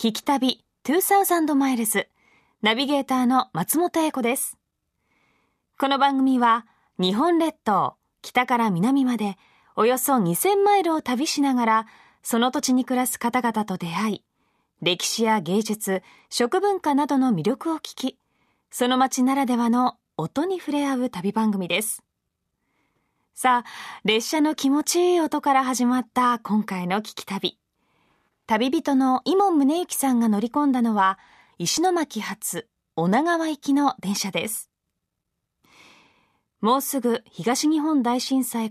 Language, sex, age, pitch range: Japanese, female, 20-39, 215-285 Hz